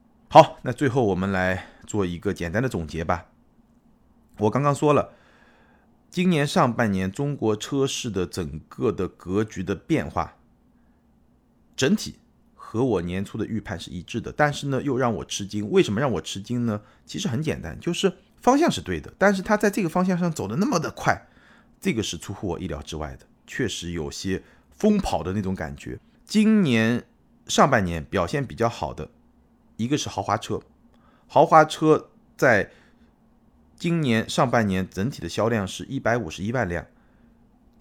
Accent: native